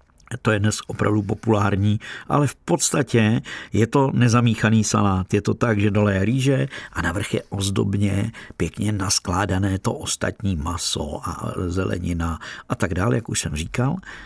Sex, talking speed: male, 155 wpm